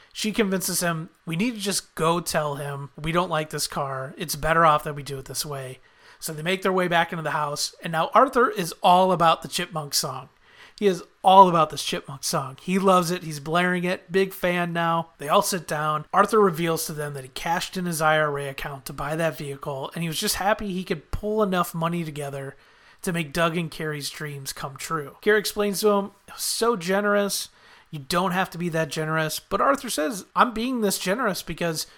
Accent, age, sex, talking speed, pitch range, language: American, 30-49, male, 220 wpm, 155-190 Hz, English